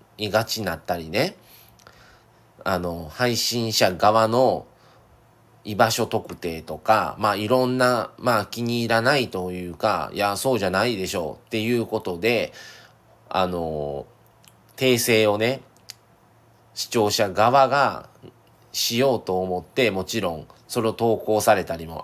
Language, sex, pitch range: Japanese, male, 90-130 Hz